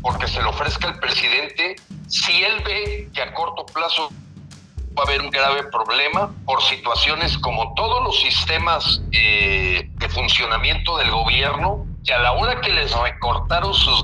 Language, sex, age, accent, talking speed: Spanish, male, 50-69, Mexican, 165 wpm